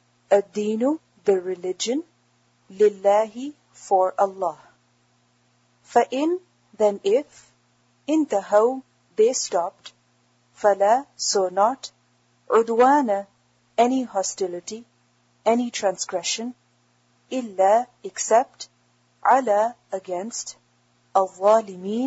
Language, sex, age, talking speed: English, female, 40-59, 75 wpm